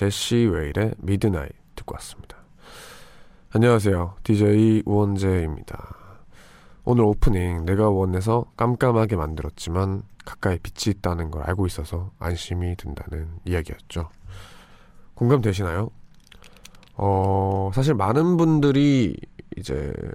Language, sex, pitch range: Korean, male, 90-115 Hz